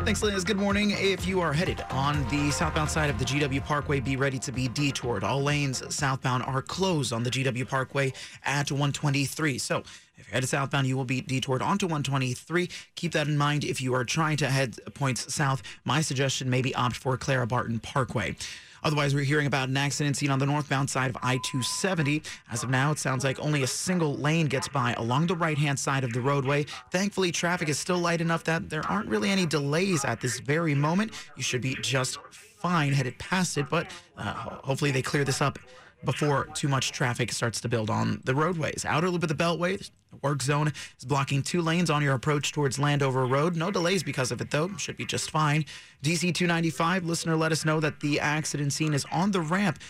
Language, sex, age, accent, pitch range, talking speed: English, male, 30-49, American, 130-160 Hz, 215 wpm